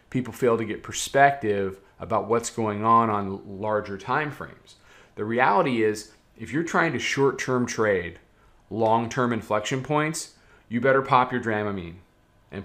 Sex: male